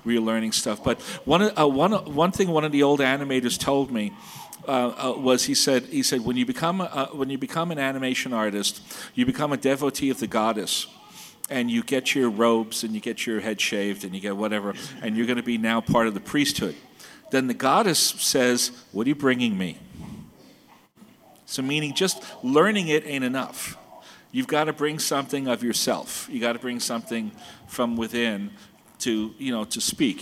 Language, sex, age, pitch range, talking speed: English, male, 40-59, 115-140 Hz, 195 wpm